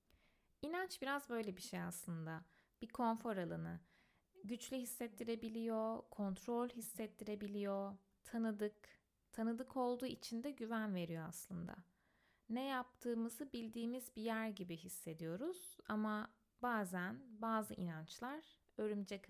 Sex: female